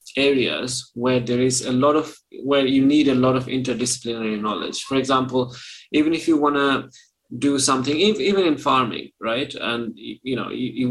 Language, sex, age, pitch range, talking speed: English, male, 20-39, 115-135 Hz, 180 wpm